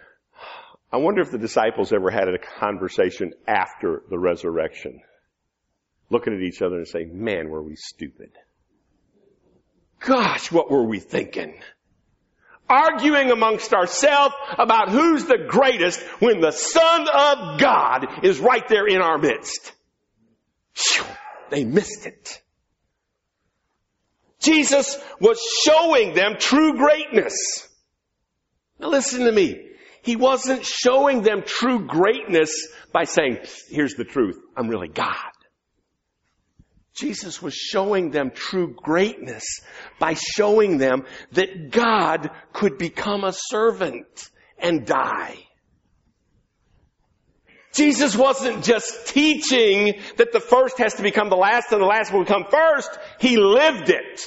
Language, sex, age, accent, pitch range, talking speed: English, male, 50-69, American, 200-305 Hz, 120 wpm